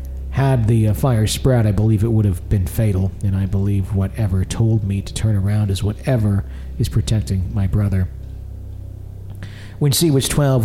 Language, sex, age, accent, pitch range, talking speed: English, male, 40-59, American, 95-120 Hz, 175 wpm